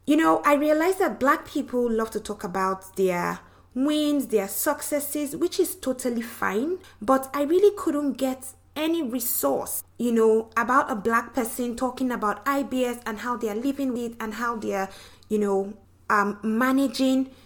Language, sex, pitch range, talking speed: English, female, 225-290 Hz, 160 wpm